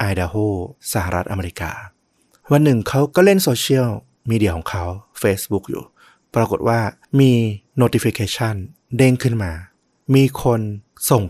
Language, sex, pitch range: Thai, male, 95-125 Hz